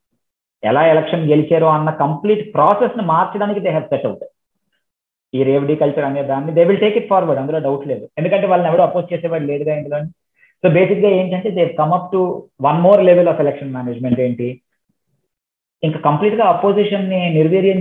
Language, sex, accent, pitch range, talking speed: Telugu, male, native, 130-180 Hz, 160 wpm